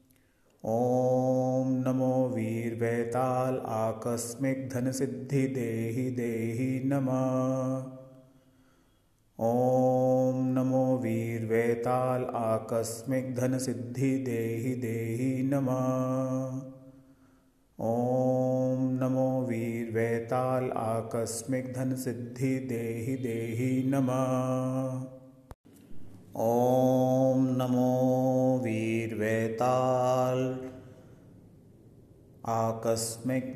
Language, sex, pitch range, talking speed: Hindi, male, 115-130 Hz, 55 wpm